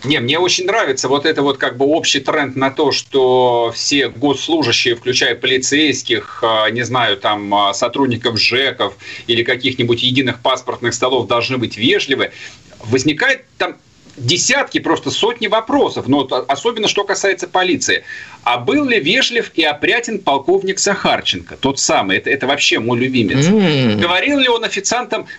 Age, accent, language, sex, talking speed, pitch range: 40-59, native, Russian, male, 145 wpm, 150-240 Hz